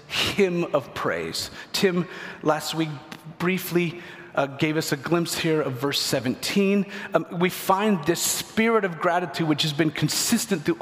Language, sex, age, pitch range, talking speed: English, male, 40-59, 145-185 Hz, 155 wpm